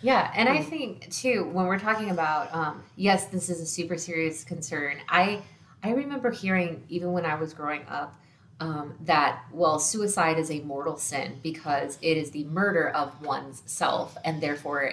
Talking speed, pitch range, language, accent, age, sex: 180 wpm, 150-175 Hz, English, American, 20-39, female